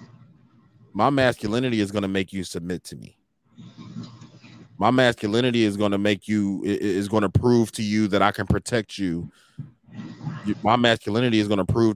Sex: male